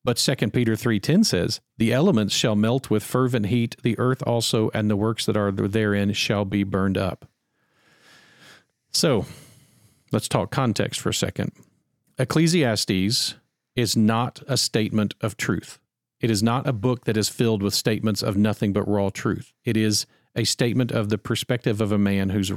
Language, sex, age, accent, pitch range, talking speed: English, male, 40-59, American, 105-125 Hz, 175 wpm